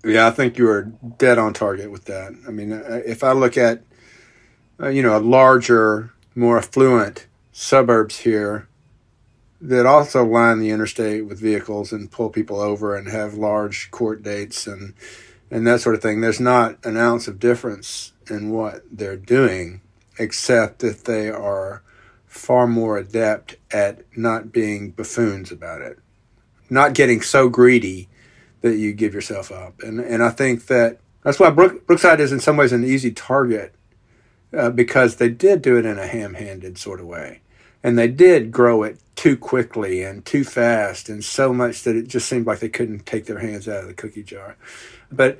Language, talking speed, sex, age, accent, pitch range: English, 175 wpm, male, 50-69, American, 110-125 Hz